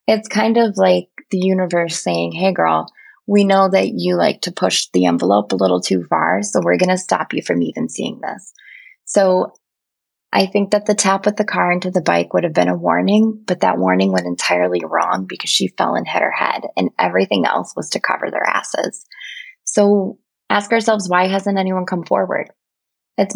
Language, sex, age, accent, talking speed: English, female, 20-39, American, 205 wpm